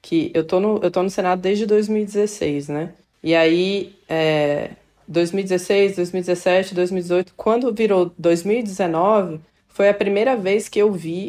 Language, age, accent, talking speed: Portuguese, 20-39, Brazilian, 145 wpm